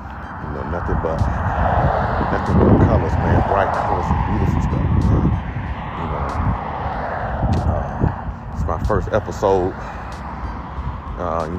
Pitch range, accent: 80-100 Hz, American